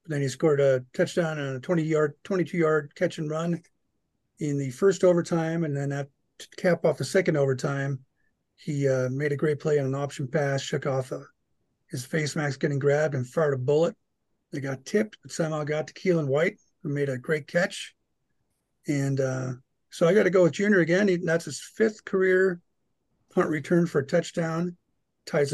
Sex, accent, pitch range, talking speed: male, American, 135-170 Hz, 195 wpm